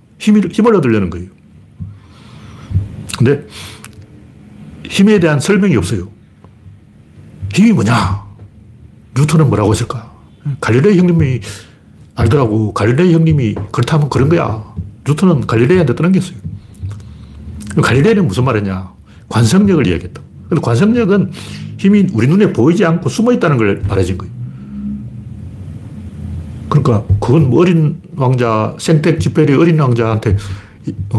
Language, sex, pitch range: Korean, male, 105-175 Hz